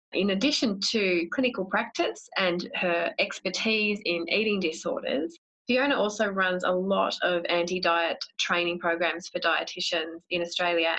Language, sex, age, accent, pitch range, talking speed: English, female, 20-39, Australian, 170-210 Hz, 130 wpm